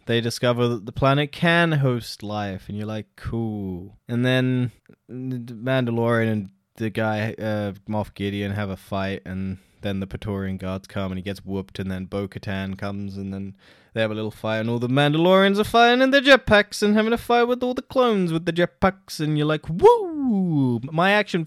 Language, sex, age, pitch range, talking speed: English, male, 20-39, 105-145 Hz, 200 wpm